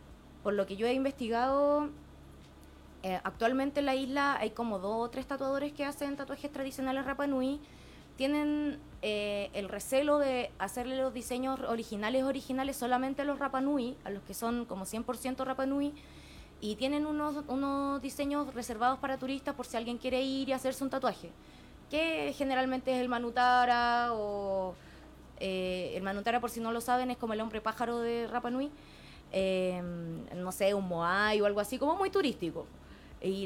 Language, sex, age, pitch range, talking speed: Spanish, female, 20-39, 210-275 Hz, 175 wpm